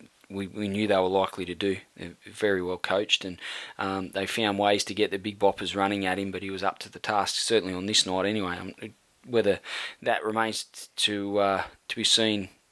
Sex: male